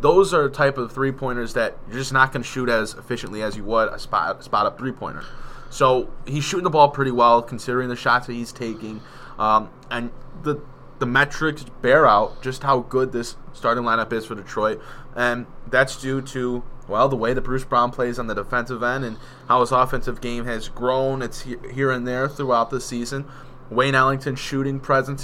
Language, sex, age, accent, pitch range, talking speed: English, male, 20-39, American, 120-135 Hz, 210 wpm